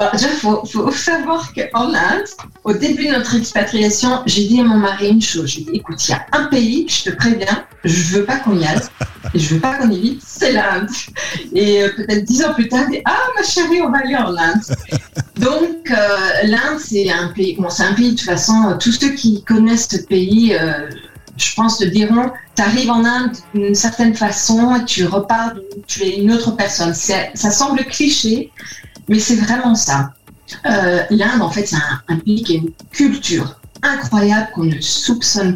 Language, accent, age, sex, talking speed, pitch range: French, French, 30-49, female, 210 wpm, 180-235 Hz